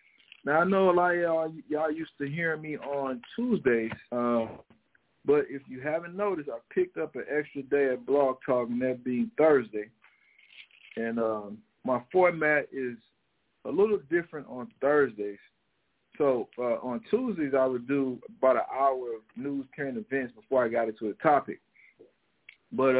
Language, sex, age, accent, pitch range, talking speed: English, male, 50-69, American, 130-210 Hz, 160 wpm